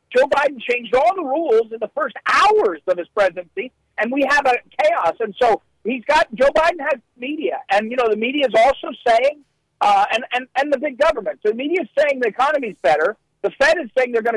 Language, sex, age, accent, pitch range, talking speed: English, male, 50-69, American, 195-280 Hz, 235 wpm